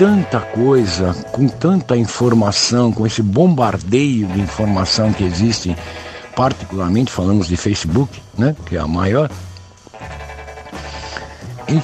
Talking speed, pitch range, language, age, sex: 110 wpm, 105-150 Hz, Portuguese, 60-79, male